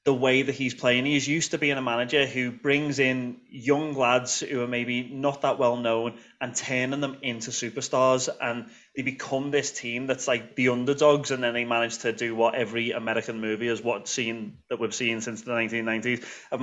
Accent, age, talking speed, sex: British, 30-49, 200 wpm, male